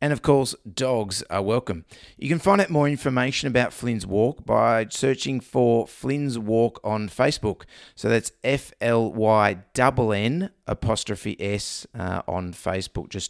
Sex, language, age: male, English, 30-49